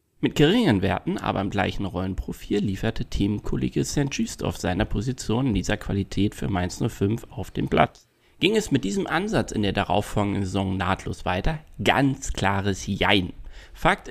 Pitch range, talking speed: 90-125 Hz, 155 wpm